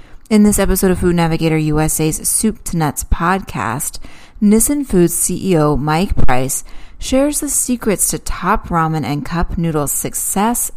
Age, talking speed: 30-49, 145 wpm